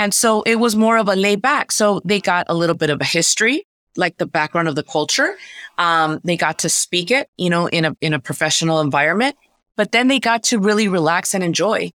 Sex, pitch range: female, 160-200 Hz